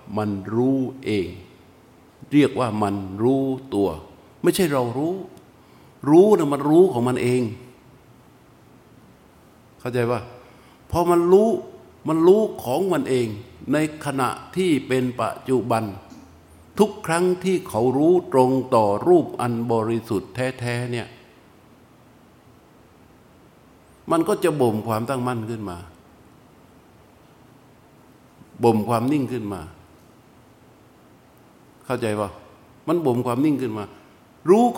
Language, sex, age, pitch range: Thai, male, 60-79, 110-155 Hz